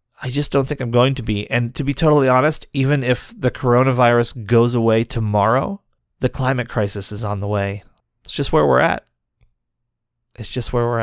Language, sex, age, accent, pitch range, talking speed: English, male, 30-49, American, 110-140 Hz, 195 wpm